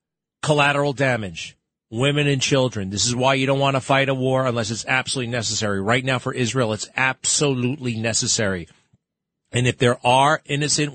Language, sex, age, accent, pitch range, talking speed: English, male, 40-59, American, 100-130 Hz, 170 wpm